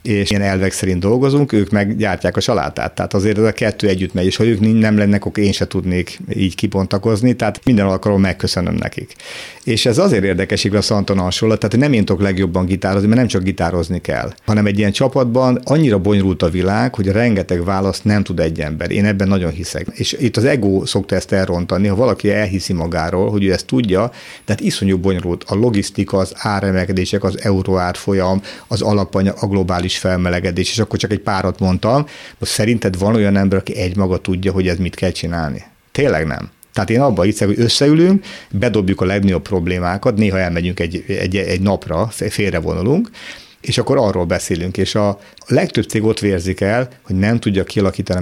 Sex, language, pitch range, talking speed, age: male, Hungarian, 95-105 Hz, 190 wpm, 50-69